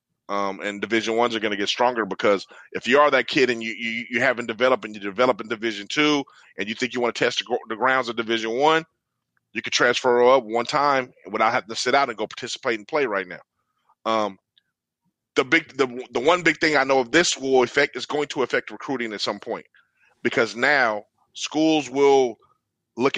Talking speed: 215 wpm